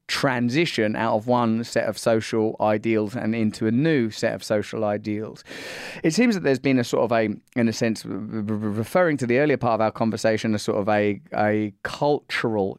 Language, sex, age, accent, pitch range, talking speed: English, male, 30-49, British, 105-115 Hz, 195 wpm